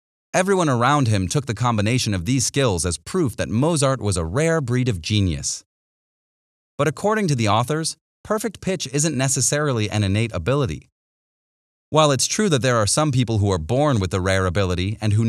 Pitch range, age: 105-145 Hz, 30-49